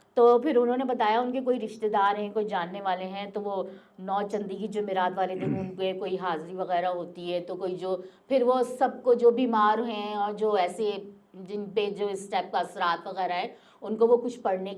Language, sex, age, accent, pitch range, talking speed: Hindi, female, 50-69, native, 195-295 Hz, 205 wpm